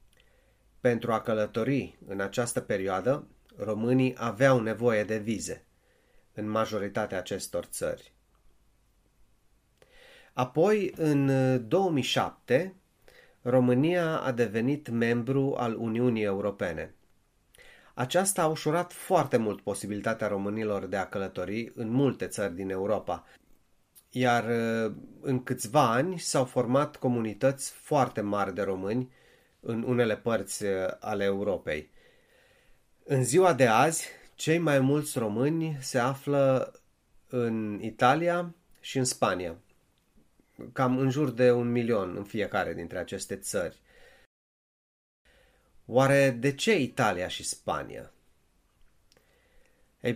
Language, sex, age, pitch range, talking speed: Romanian, male, 30-49, 110-140 Hz, 105 wpm